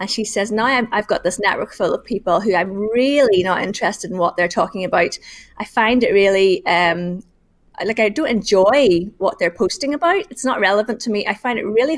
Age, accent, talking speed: 30-49, British, 215 wpm